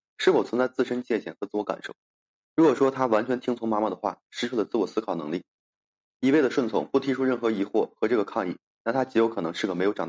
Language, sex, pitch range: Chinese, male, 105-125 Hz